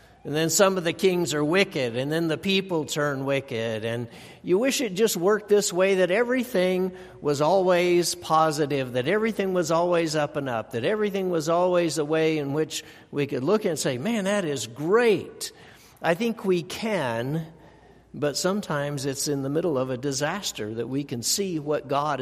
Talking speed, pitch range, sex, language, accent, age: 190 wpm, 135-180 Hz, male, English, American, 60-79